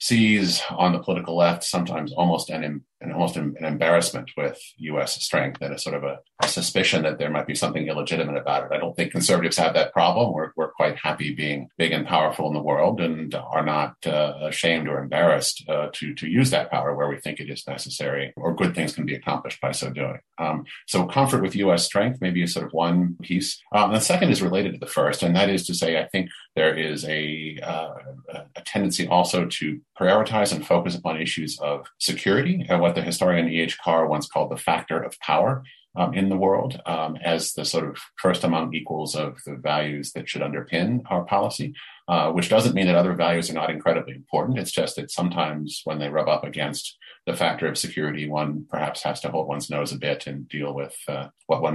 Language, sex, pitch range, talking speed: English, male, 75-90 Hz, 220 wpm